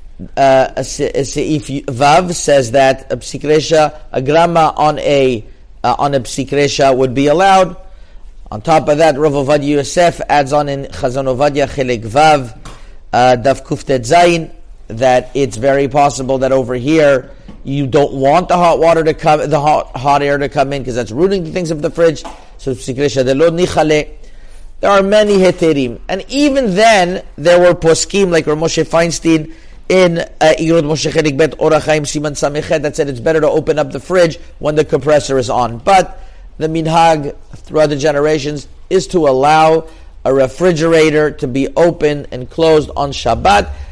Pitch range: 135-165 Hz